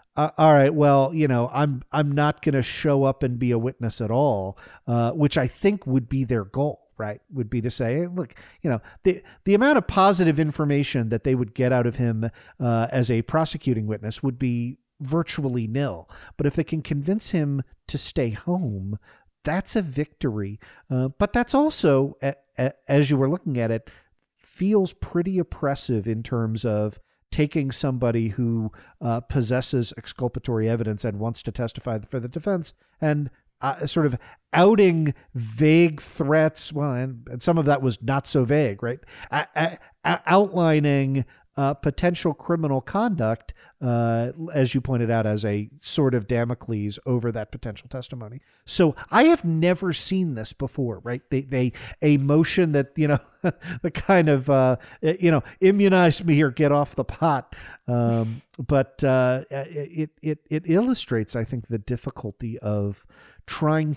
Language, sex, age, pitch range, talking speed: English, male, 50-69, 120-155 Hz, 165 wpm